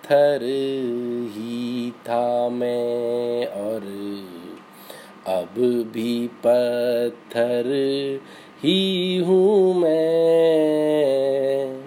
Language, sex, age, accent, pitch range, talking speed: Hindi, male, 30-49, native, 120-155 Hz, 55 wpm